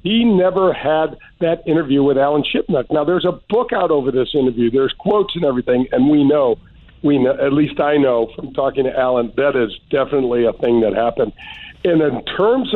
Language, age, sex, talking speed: English, 50-69, male, 200 wpm